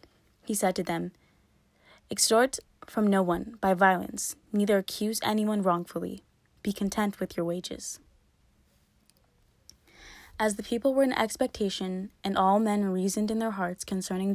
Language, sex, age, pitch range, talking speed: English, female, 20-39, 175-205 Hz, 140 wpm